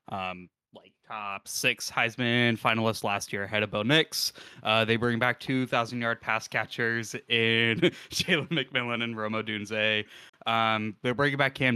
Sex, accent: male, American